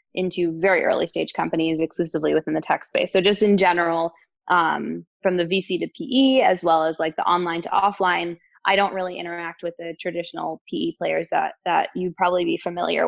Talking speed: 195 wpm